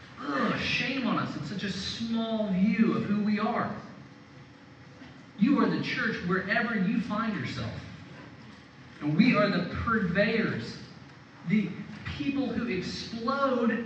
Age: 40-59